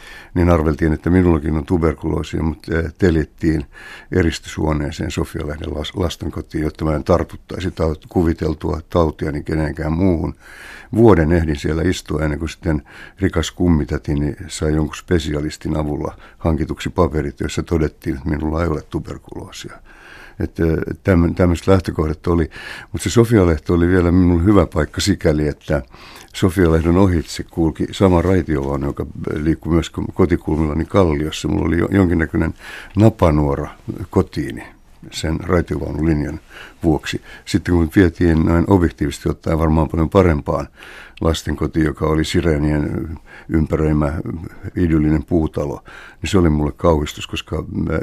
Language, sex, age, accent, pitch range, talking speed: Finnish, male, 60-79, native, 75-90 Hz, 125 wpm